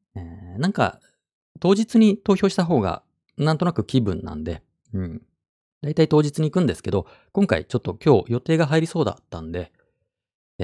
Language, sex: Japanese, male